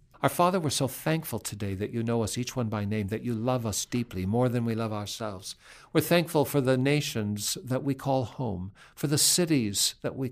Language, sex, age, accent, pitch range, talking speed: English, male, 60-79, American, 115-150 Hz, 220 wpm